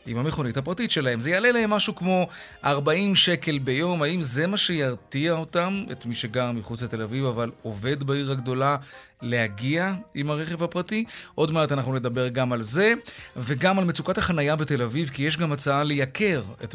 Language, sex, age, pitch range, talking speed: Hebrew, male, 30-49, 125-170 Hz, 180 wpm